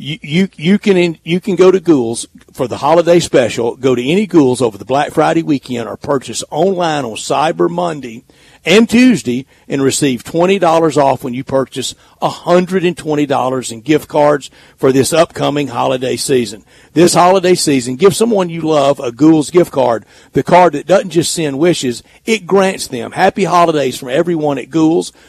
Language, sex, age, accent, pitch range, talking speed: English, male, 40-59, American, 135-175 Hz, 190 wpm